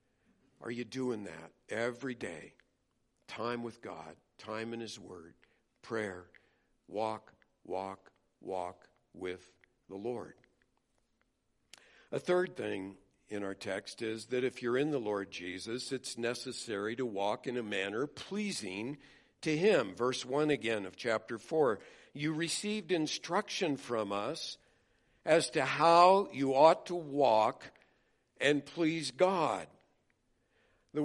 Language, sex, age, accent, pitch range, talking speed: English, male, 60-79, American, 125-160 Hz, 130 wpm